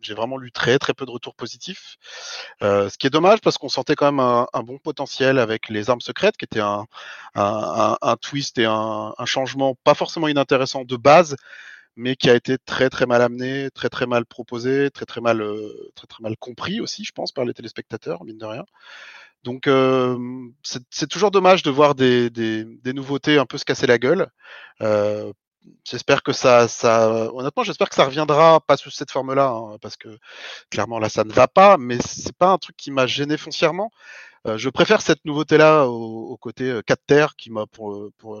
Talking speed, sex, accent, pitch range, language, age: 210 wpm, male, French, 115-150 Hz, French, 30-49